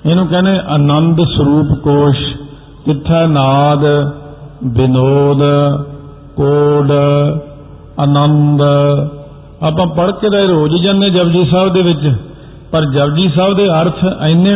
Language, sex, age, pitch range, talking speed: Punjabi, male, 50-69, 140-170 Hz, 105 wpm